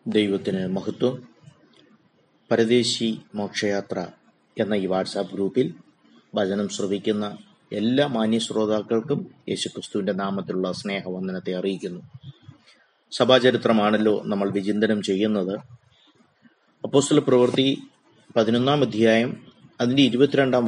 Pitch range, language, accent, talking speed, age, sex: 105-140 Hz, Malayalam, native, 75 wpm, 30-49, male